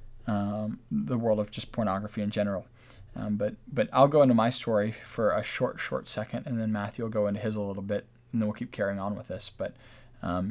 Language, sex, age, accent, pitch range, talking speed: English, male, 20-39, American, 105-125 Hz, 235 wpm